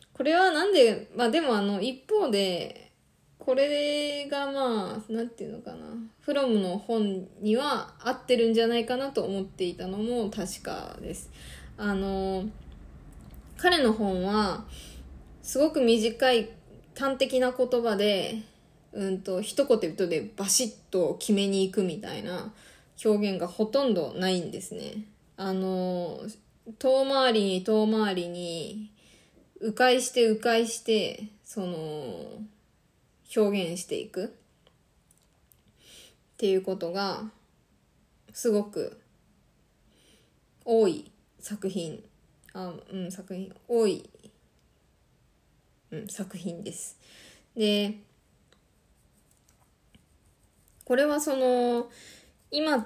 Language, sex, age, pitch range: Japanese, female, 20-39, 190-240 Hz